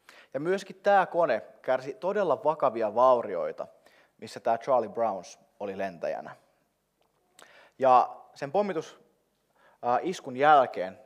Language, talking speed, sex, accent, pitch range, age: Finnish, 100 wpm, male, native, 105-140 Hz, 30-49